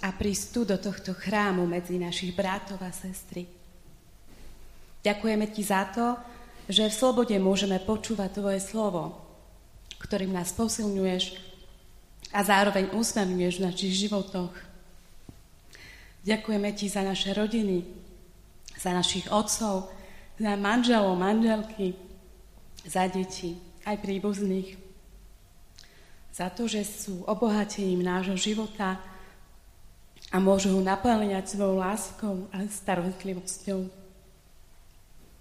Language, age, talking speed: Slovak, 30-49, 105 wpm